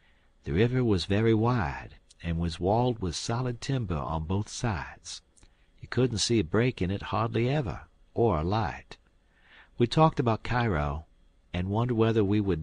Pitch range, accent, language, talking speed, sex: 80-110 Hz, American, English, 165 wpm, male